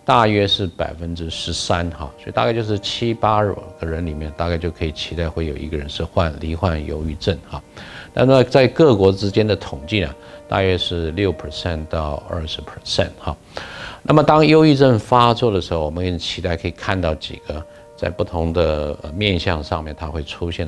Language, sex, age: Chinese, male, 50-69